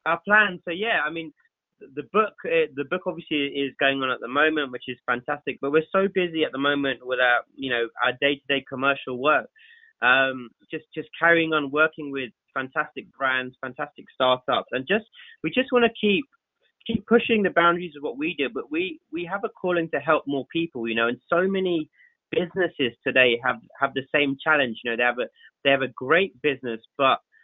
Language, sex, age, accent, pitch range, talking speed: English, male, 20-39, British, 130-180 Hz, 205 wpm